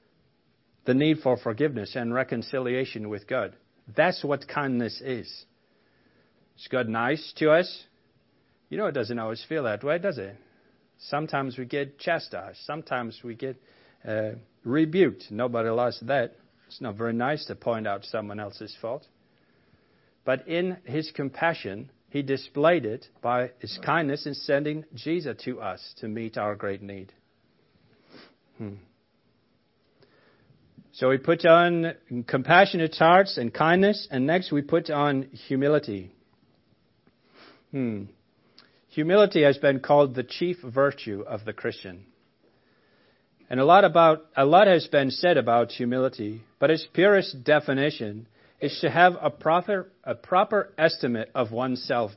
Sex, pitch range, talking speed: male, 115-155 Hz, 140 wpm